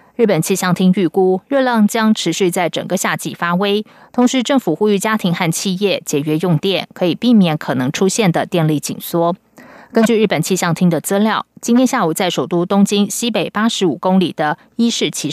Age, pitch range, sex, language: 20-39, 170-225 Hz, female, Chinese